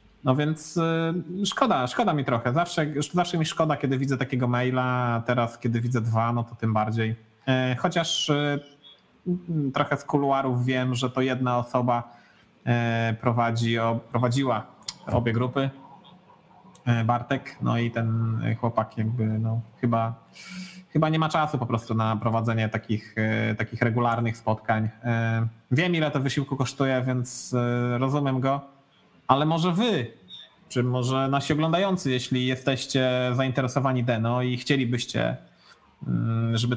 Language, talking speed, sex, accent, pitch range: Polish, 125 wpm, male, native, 120-145 Hz